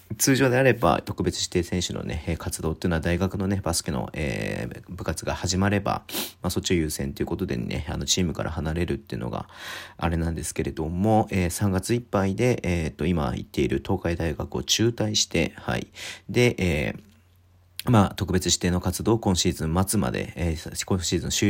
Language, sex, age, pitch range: Japanese, male, 40-59, 80-100 Hz